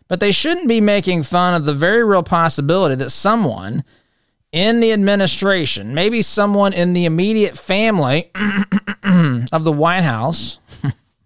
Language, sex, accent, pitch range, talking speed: English, male, American, 150-215 Hz, 140 wpm